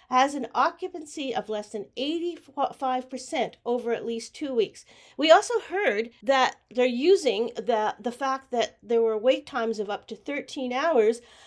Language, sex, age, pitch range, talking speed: English, female, 50-69, 220-280 Hz, 160 wpm